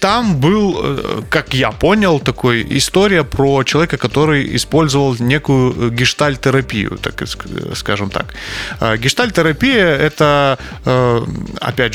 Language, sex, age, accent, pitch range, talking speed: Russian, male, 30-49, native, 120-160 Hz, 95 wpm